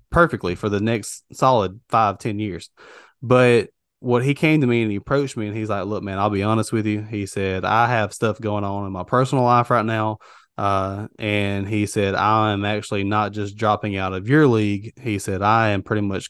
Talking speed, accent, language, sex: 225 wpm, American, English, male